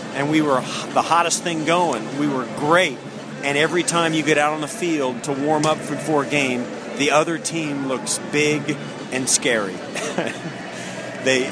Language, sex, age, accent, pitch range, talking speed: English, male, 40-59, American, 125-150 Hz, 170 wpm